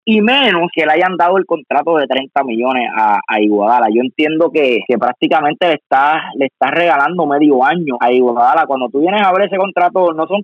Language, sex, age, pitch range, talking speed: Spanish, male, 20-39, 140-175 Hz, 215 wpm